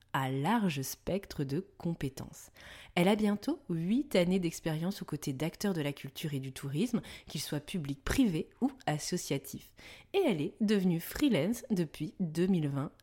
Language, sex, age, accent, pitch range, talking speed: French, female, 30-49, French, 150-215 Hz, 150 wpm